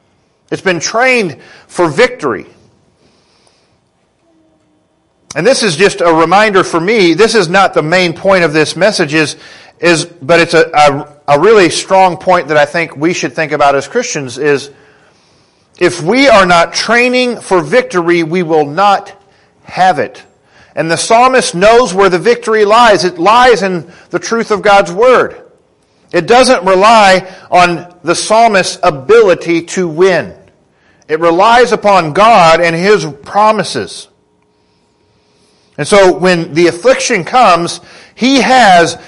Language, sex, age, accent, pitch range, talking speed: English, male, 40-59, American, 145-205 Hz, 145 wpm